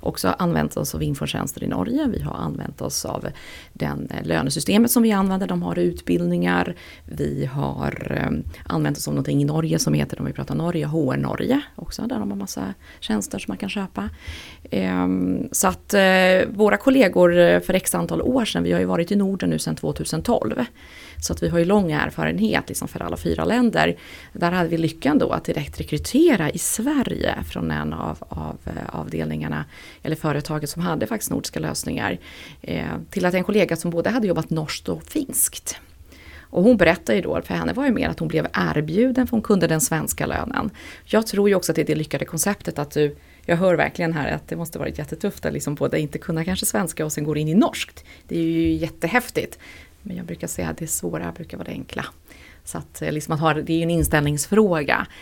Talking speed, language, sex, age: 205 wpm, Swedish, female, 30-49